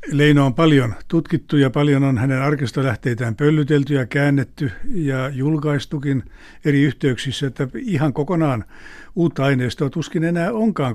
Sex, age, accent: male, 60-79, native